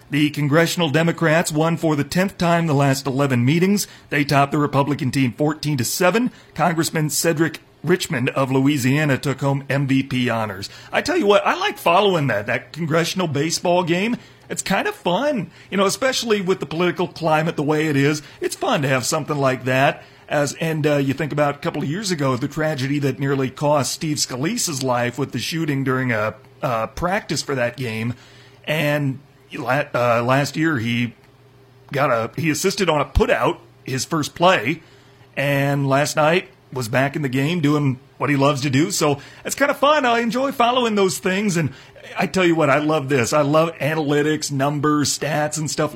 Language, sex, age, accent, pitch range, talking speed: English, male, 40-59, American, 135-165 Hz, 190 wpm